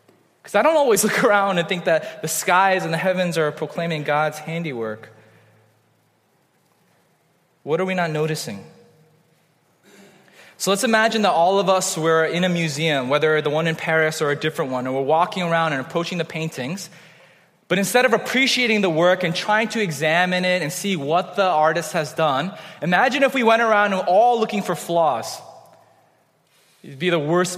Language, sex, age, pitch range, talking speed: English, male, 20-39, 155-200 Hz, 185 wpm